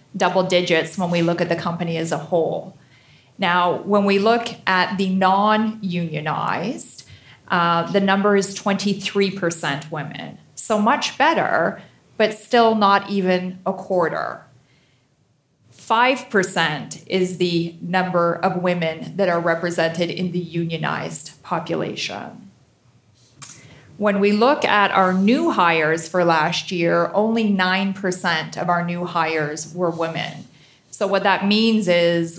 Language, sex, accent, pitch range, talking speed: English, female, American, 165-195 Hz, 125 wpm